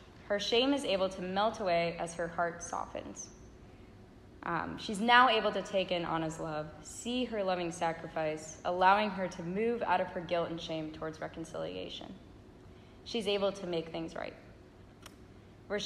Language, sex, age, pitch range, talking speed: English, female, 10-29, 165-205 Hz, 165 wpm